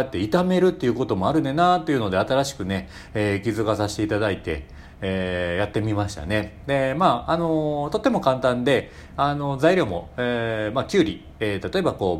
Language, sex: Japanese, male